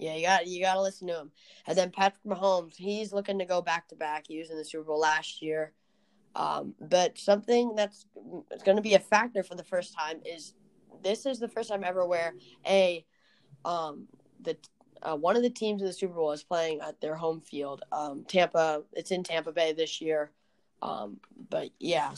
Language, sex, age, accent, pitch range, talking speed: English, female, 20-39, American, 160-195 Hz, 215 wpm